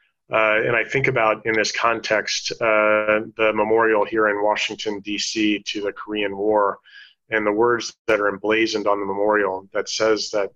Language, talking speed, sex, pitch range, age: English, 175 wpm, male, 105-115 Hz, 30-49